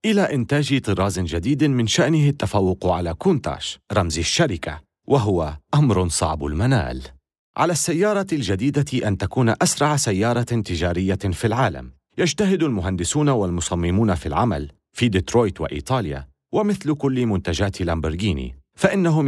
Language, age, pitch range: Arabic, 40-59, 90-140 Hz